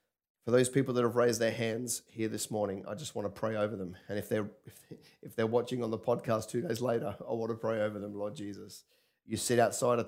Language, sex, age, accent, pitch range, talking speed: English, male, 30-49, Australian, 105-125 Hz, 250 wpm